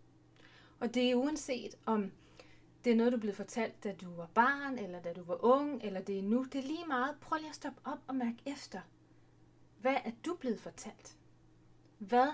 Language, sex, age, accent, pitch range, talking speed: Danish, female, 30-49, native, 205-250 Hz, 210 wpm